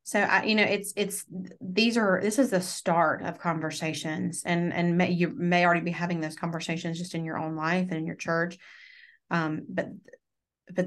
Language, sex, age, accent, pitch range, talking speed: English, female, 30-49, American, 165-180 Hz, 195 wpm